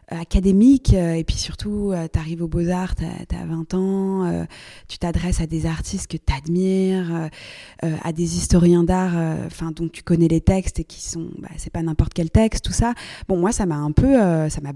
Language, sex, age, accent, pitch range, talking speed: French, female, 20-39, French, 160-185 Hz, 230 wpm